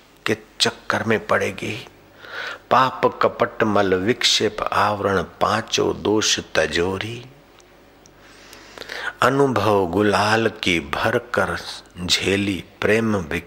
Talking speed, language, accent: 85 wpm, Hindi, native